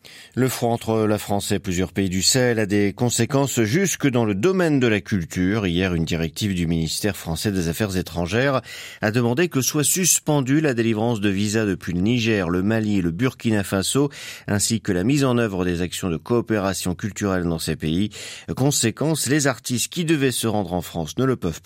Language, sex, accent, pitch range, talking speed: French, male, French, 90-135 Hz, 200 wpm